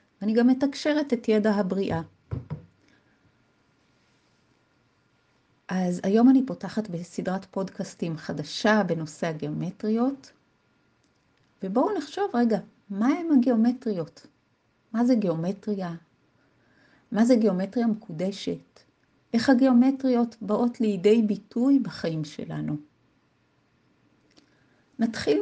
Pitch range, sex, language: 185-240 Hz, female, Hebrew